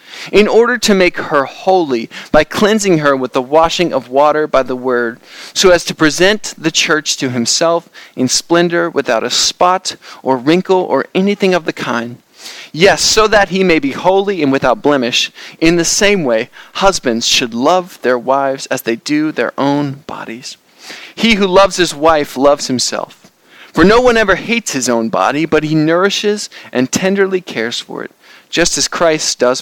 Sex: male